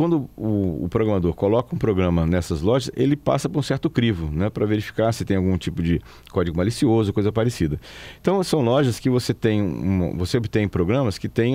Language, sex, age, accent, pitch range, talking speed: Portuguese, male, 40-59, Brazilian, 95-125 Hz, 190 wpm